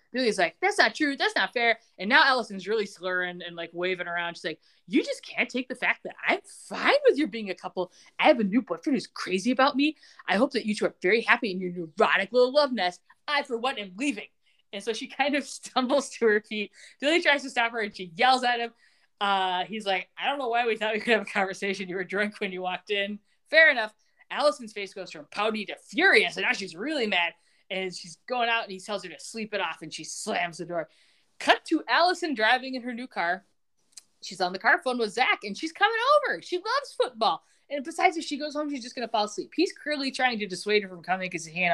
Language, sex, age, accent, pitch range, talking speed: English, female, 20-39, American, 195-285 Hz, 255 wpm